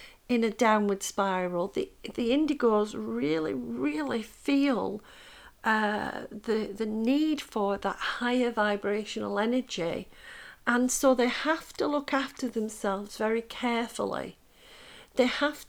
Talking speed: 120 wpm